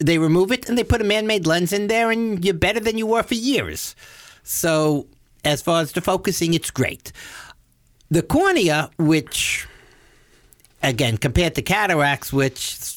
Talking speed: 160 wpm